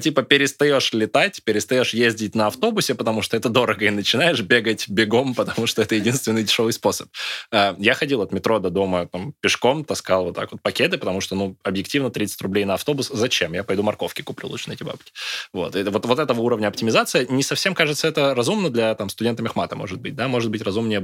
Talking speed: 210 wpm